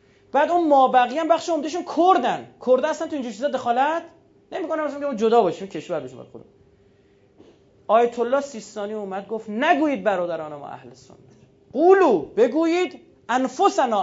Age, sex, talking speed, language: 30-49, male, 155 wpm, Persian